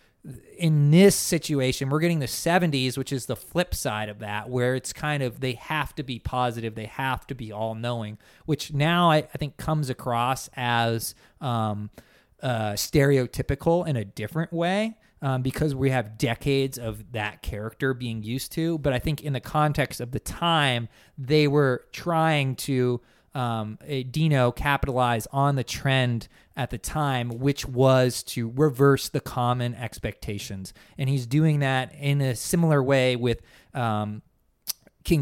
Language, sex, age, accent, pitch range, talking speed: English, male, 30-49, American, 120-150 Hz, 160 wpm